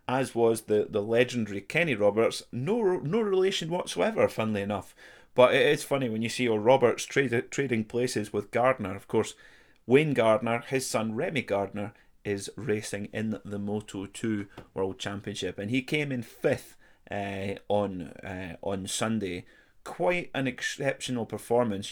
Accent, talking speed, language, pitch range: British, 155 wpm, English, 100-125 Hz